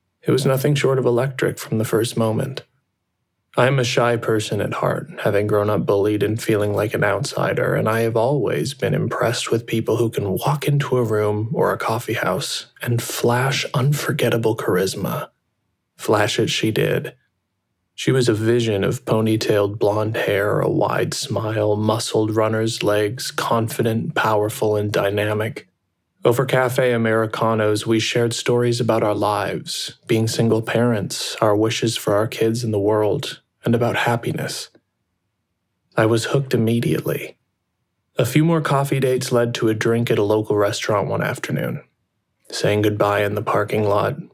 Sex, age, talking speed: male, 20-39, 160 wpm